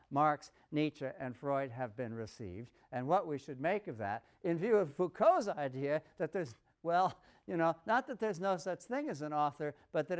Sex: male